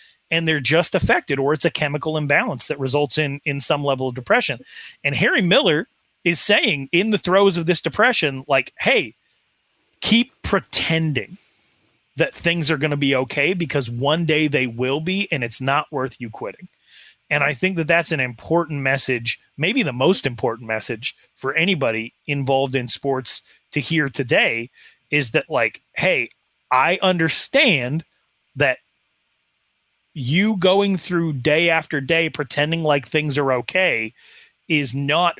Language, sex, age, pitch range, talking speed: English, male, 30-49, 135-170 Hz, 155 wpm